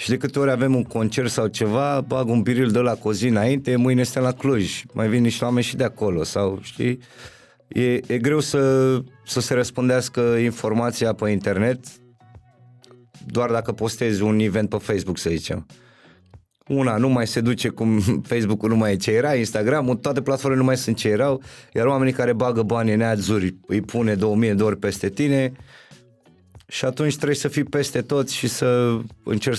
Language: Romanian